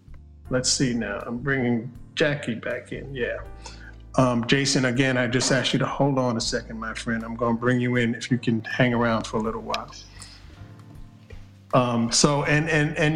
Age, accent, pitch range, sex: 50-69, American, 120-140 Hz, male